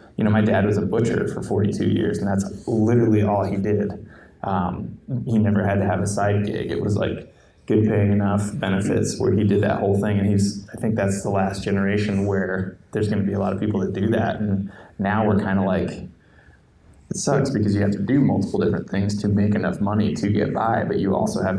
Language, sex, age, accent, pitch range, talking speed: English, male, 20-39, American, 100-105 Hz, 235 wpm